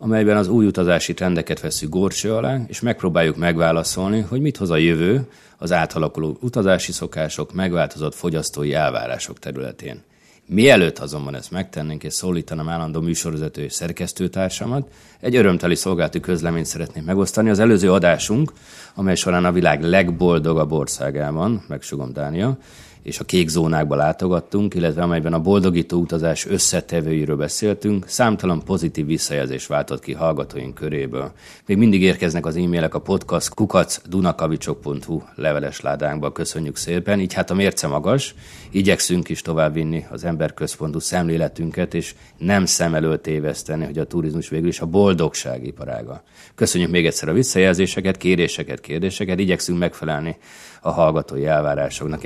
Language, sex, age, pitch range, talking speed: Hungarian, male, 30-49, 80-95 Hz, 130 wpm